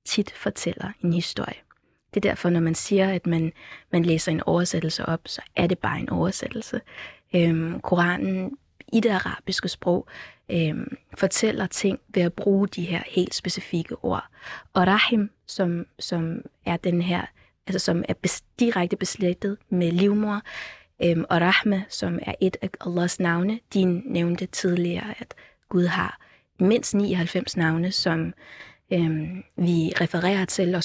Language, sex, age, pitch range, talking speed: Danish, female, 20-39, 170-195 Hz, 145 wpm